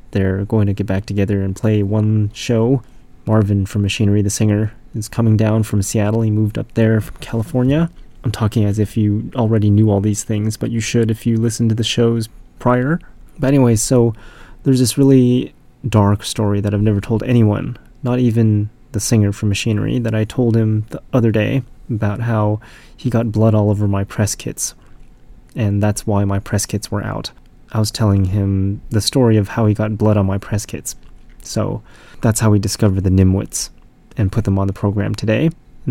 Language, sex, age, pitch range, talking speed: English, male, 20-39, 105-120 Hz, 200 wpm